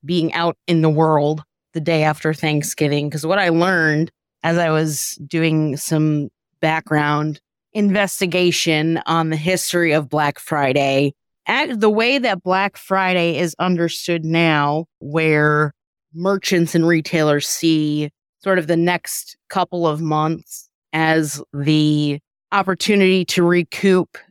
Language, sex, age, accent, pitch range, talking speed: English, female, 30-49, American, 155-185 Hz, 125 wpm